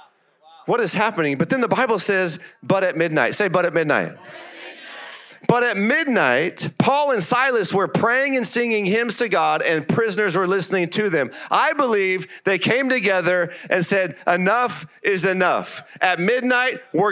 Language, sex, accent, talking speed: English, male, American, 165 wpm